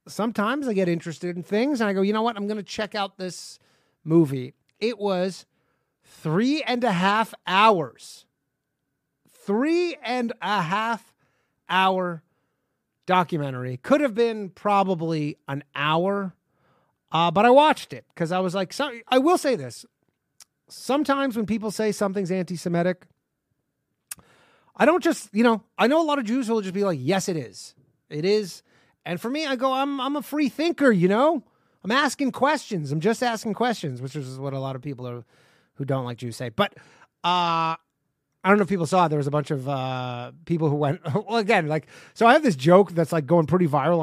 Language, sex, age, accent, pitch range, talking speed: English, male, 30-49, American, 150-220 Hz, 190 wpm